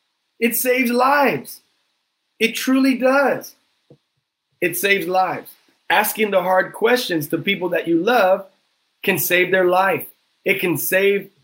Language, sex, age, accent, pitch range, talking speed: English, male, 30-49, American, 165-200 Hz, 130 wpm